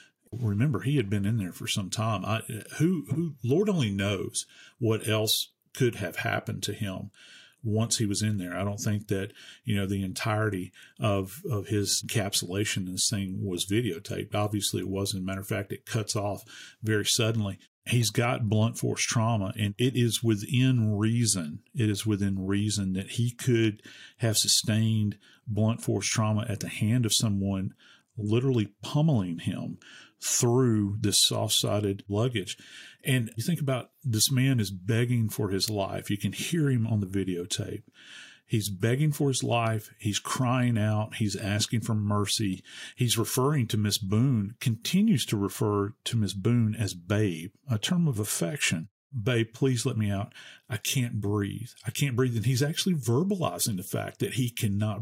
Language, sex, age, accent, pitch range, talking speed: English, male, 40-59, American, 100-120 Hz, 170 wpm